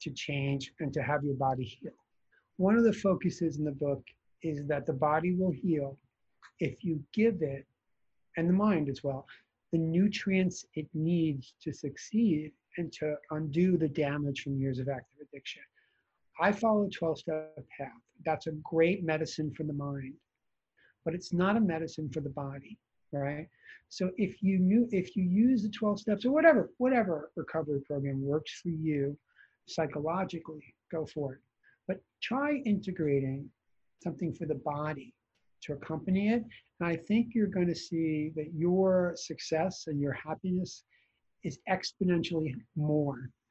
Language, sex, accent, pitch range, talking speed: English, male, American, 145-185 Hz, 155 wpm